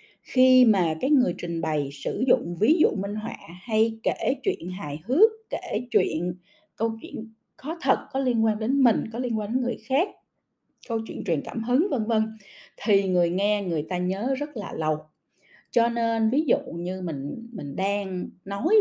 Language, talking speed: Vietnamese, 190 wpm